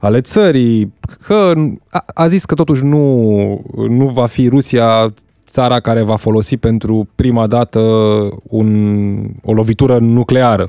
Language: Romanian